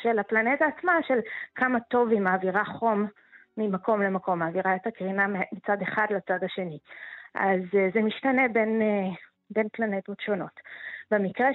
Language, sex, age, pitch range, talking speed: Hebrew, female, 20-39, 200-260 Hz, 135 wpm